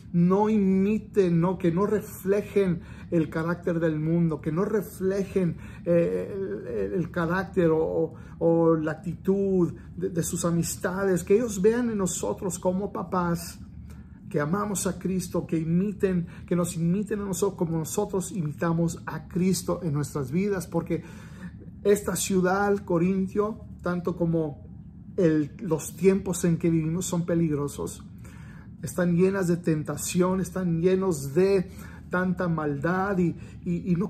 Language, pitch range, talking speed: Spanish, 165-195 Hz, 140 wpm